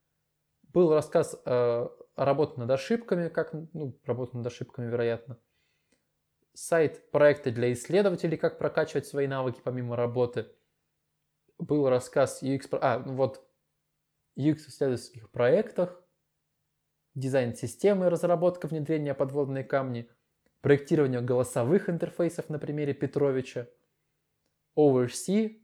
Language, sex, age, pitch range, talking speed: Russian, male, 20-39, 130-160 Hz, 105 wpm